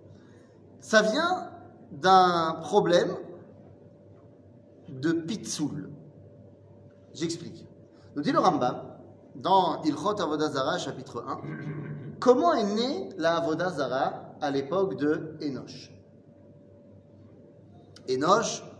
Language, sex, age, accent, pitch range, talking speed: French, male, 30-49, French, 125-190 Hz, 85 wpm